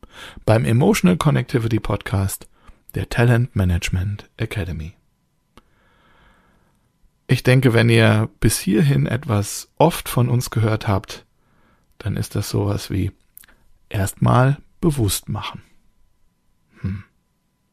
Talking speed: 100 wpm